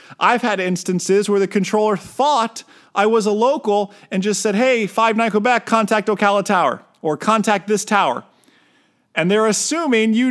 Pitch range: 170-220 Hz